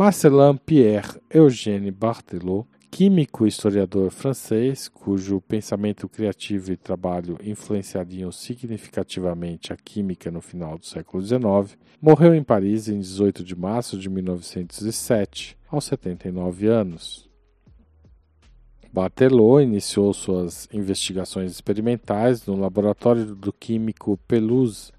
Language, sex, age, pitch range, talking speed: Portuguese, male, 40-59, 90-110 Hz, 105 wpm